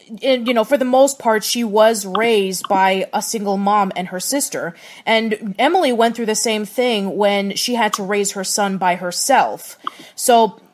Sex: female